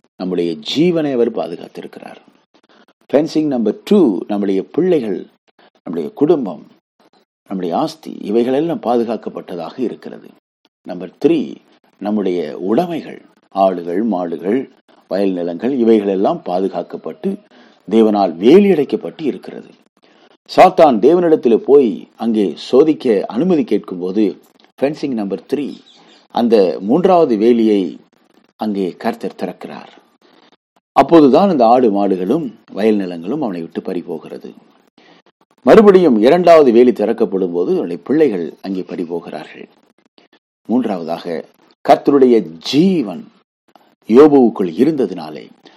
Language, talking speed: Tamil, 85 wpm